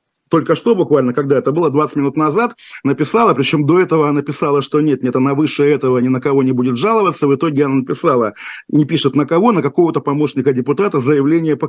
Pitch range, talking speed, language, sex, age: 135-165 Hz, 210 wpm, Russian, male, 50-69